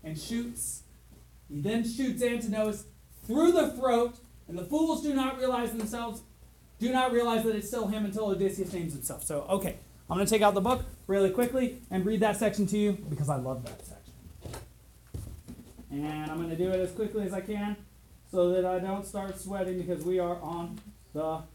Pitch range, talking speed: 170-230 Hz, 200 wpm